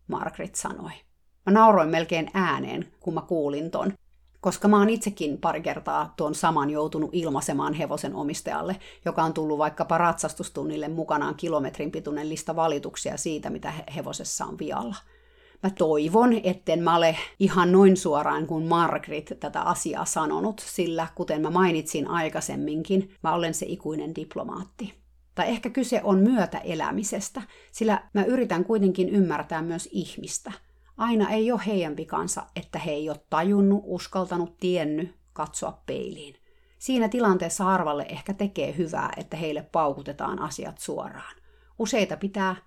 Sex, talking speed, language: female, 140 wpm, Finnish